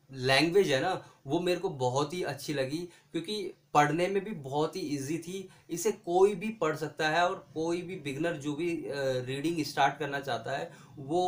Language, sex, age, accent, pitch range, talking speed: Hindi, male, 20-39, native, 150-190 Hz, 190 wpm